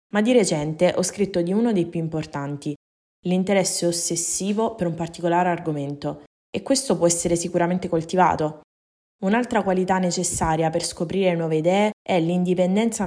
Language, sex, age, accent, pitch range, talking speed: Italian, female, 20-39, native, 165-190 Hz, 140 wpm